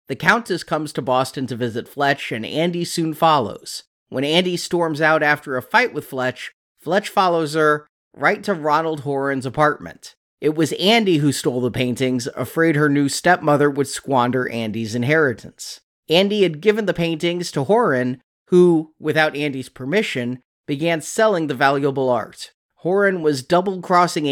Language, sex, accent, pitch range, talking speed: English, male, American, 135-170 Hz, 155 wpm